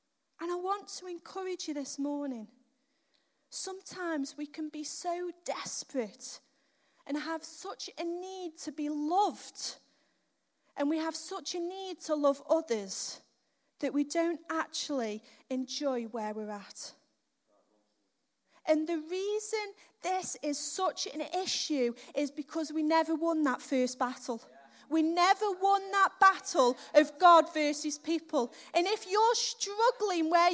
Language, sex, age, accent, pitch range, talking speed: English, female, 30-49, British, 285-385 Hz, 135 wpm